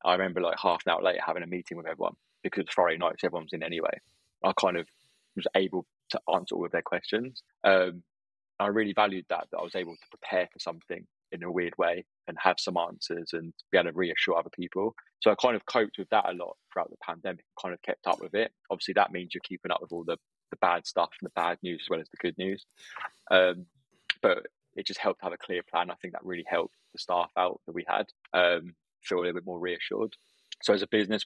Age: 20-39